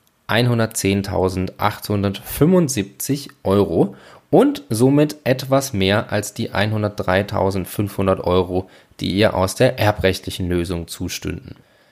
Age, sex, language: 20-39, male, German